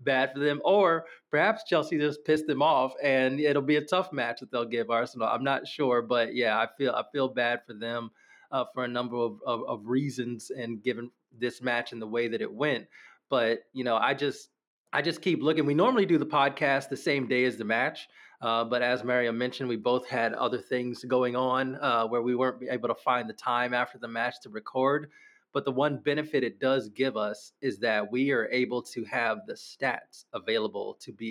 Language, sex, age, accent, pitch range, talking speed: English, male, 20-39, American, 120-135 Hz, 220 wpm